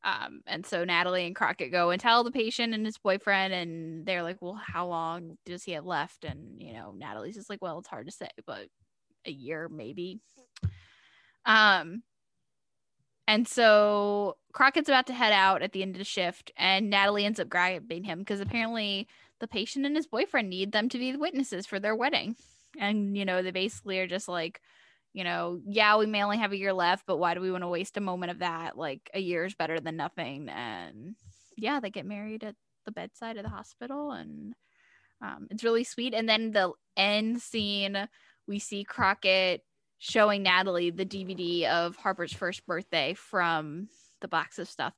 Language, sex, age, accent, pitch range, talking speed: English, female, 10-29, American, 180-225 Hz, 195 wpm